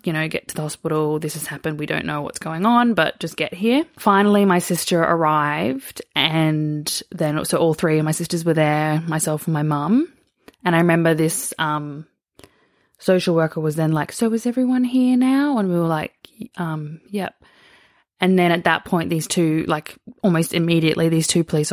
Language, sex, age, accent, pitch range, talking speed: English, female, 20-39, Australian, 155-175 Hz, 195 wpm